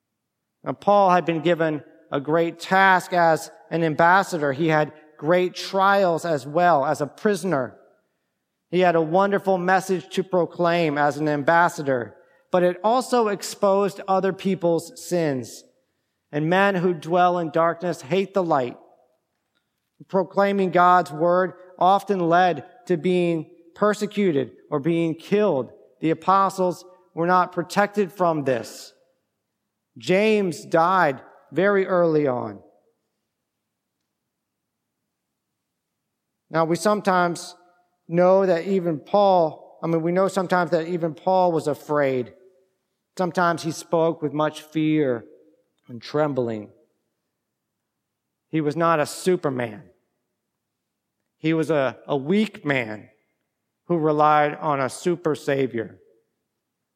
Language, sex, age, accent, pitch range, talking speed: English, male, 40-59, American, 155-185 Hz, 115 wpm